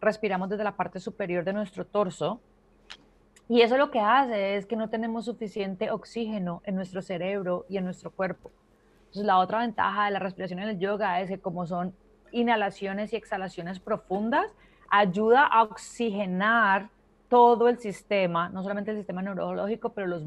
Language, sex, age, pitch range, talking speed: Spanish, female, 30-49, 185-215 Hz, 170 wpm